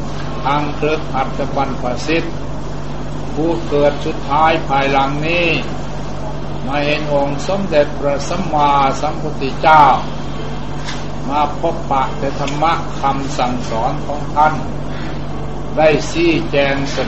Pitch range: 135-150 Hz